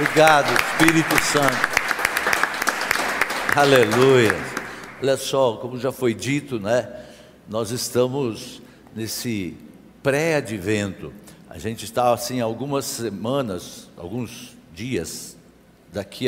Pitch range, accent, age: 110-155 Hz, Brazilian, 60-79